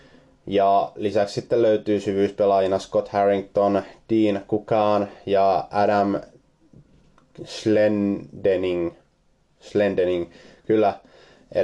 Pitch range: 100-110 Hz